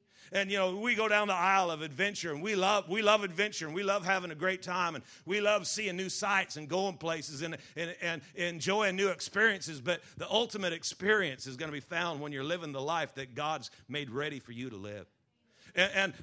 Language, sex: English, male